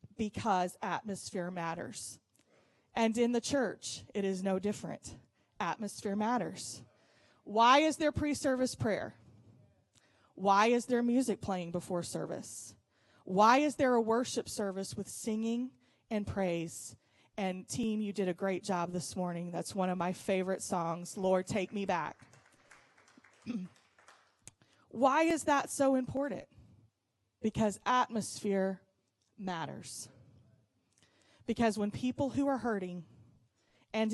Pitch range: 165-220 Hz